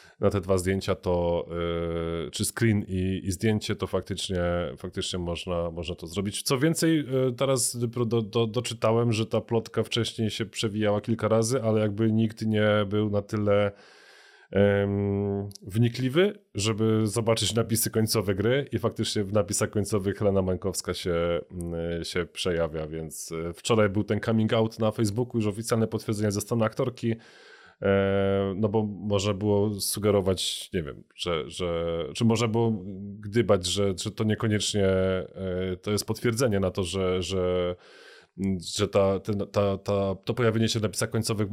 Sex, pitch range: male, 95-115 Hz